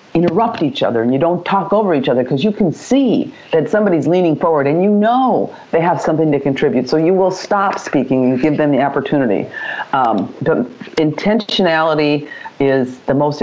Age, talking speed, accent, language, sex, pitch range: 50-69, 185 wpm, American, English, female, 135-185 Hz